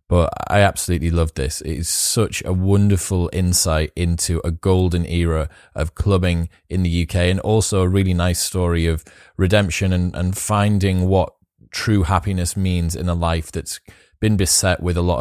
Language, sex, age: English, male, 30-49